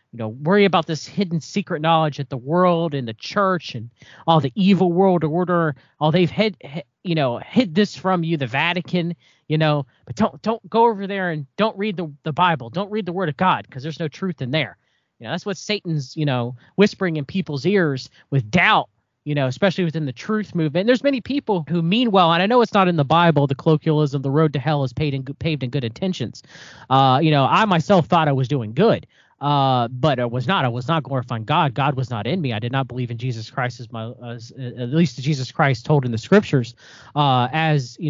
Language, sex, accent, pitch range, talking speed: English, male, American, 135-180 Hz, 240 wpm